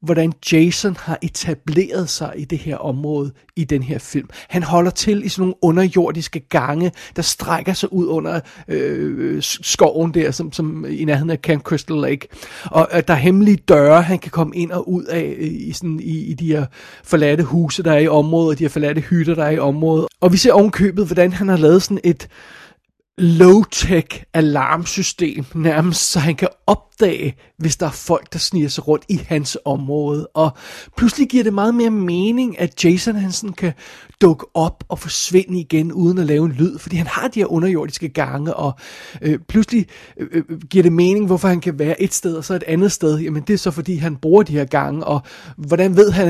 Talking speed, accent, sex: 205 wpm, native, male